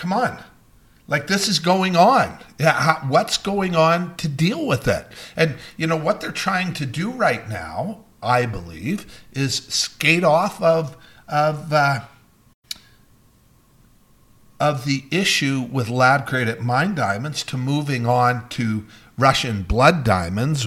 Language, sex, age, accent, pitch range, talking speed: English, male, 50-69, American, 120-160 Hz, 140 wpm